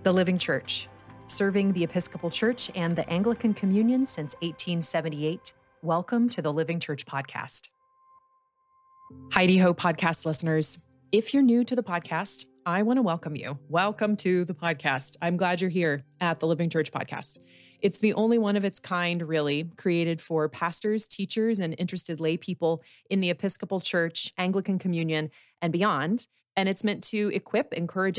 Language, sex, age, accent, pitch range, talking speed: English, female, 30-49, American, 160-200 Hz, 165 wpm